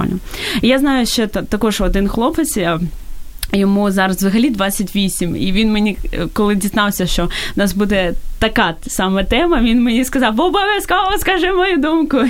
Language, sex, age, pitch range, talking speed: Ukrainian, female, 20-39, 190-230 Hz, 140 wpm